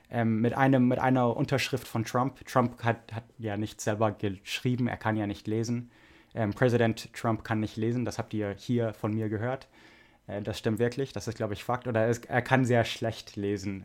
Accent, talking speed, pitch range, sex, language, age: German, 210 wpm, 110-125 Hz, male, English, 20-39